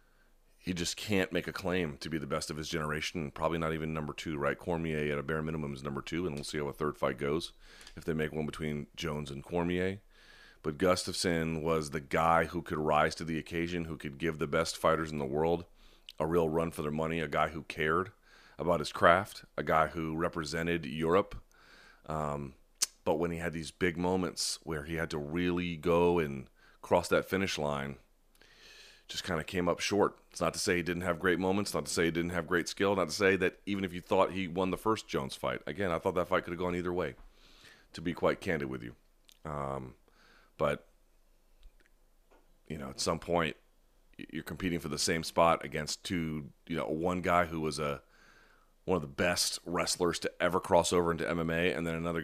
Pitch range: 75-85 Hz